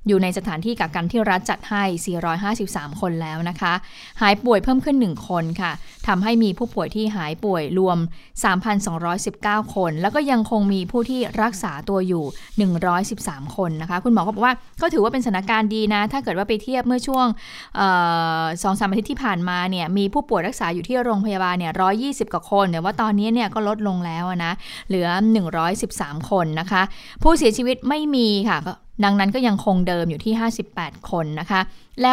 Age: 20-39